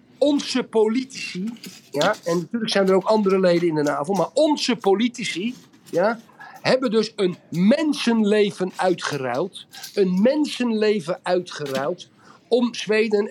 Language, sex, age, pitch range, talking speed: Dutch, male, 50-69, 175-225 Hz, 120 wpm